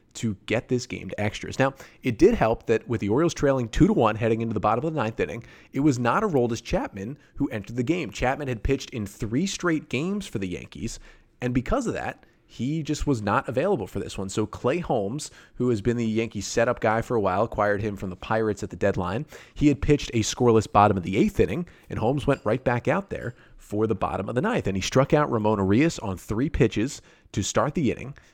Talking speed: 245 wpm